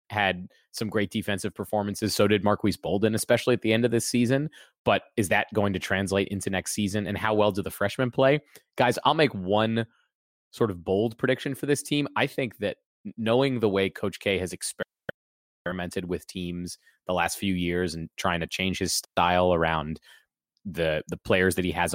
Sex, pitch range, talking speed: male, 90-110 Hz, 195 wpm